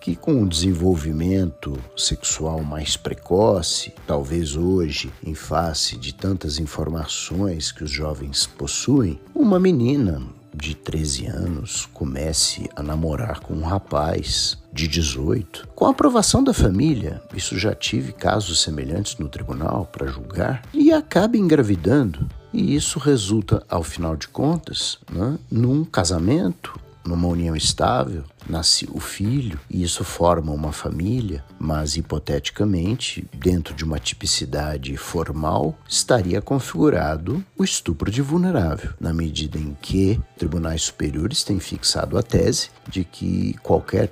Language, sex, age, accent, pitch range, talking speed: Portuguese, male, 50-69, Brazilian, 80-105 Hz, 130 wpm